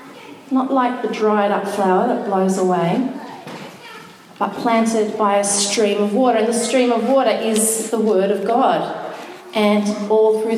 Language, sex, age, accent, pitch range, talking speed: English, female, 30-49, Australian, 190-225 Hz, 165 wpm